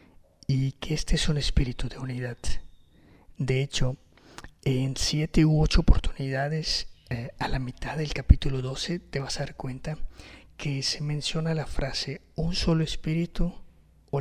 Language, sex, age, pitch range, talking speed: Spanish, male, 50-69, 125-155 Hz, 150 wpm